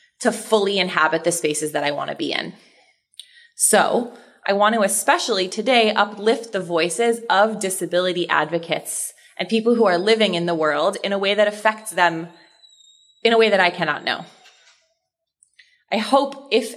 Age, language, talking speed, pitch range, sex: 20-39, English, 170 wpm, 175-240 Hz, female